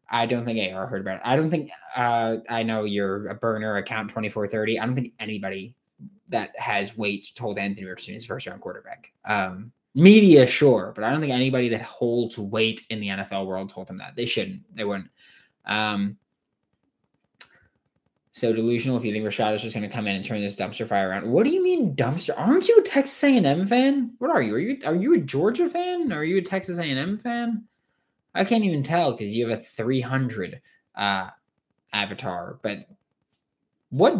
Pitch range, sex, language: 105-140 Hz, male, English